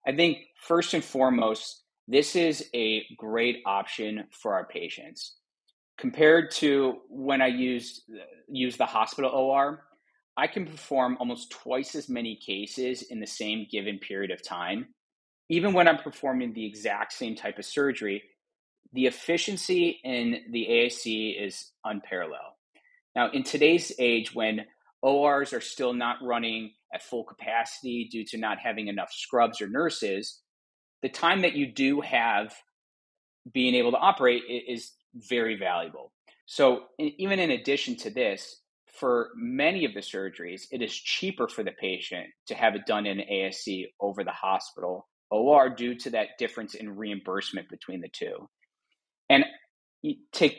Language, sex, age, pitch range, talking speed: English, male, 30-49, 115-160 Hz, 150 wpm